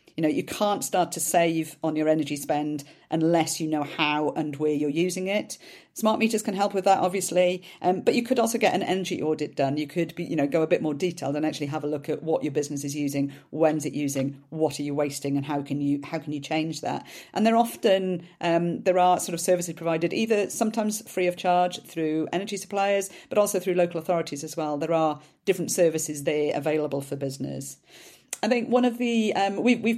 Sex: female